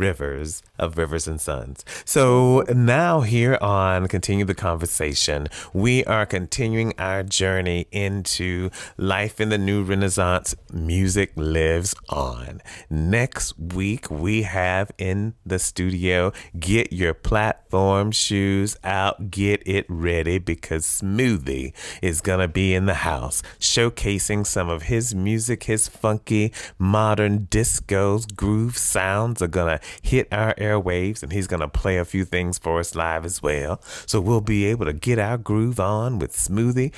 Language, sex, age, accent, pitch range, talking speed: English, male, 30-49, American, 90-110 Hz, 150 wpm